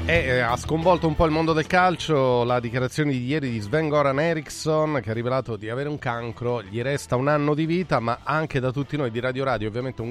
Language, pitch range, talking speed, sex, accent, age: Italian, 115-155 Hz, 240 wpm, male, native, 30-49